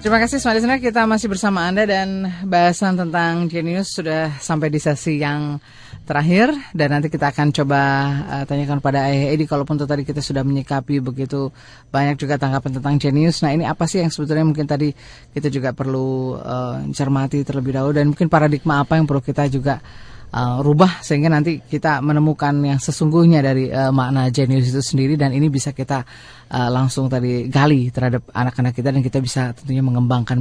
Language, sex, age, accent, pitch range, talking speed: Indonesian, female, 20-39, native, 130-155 Hz, 180 wpm